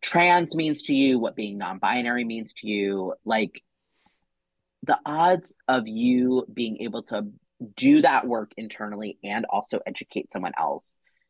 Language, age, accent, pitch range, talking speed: English, 30-49, American, 105-145 Hz, 145 wpm